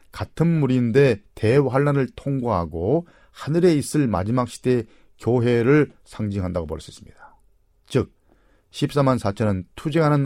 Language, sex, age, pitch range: Korean, male, 40-59, 100-140 Hz